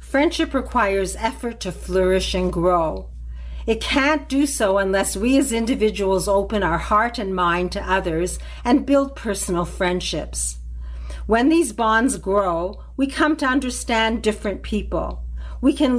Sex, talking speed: female, 145 wpm